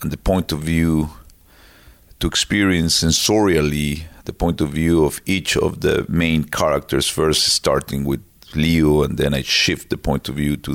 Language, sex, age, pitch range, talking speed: English, male, 40-59, 75-80 Hz, 175 wpm